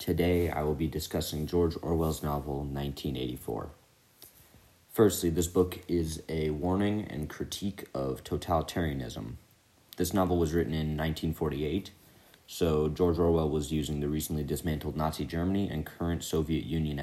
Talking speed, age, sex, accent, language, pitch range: 135 wpm, 30-49, male, American, English, 75-90 Hz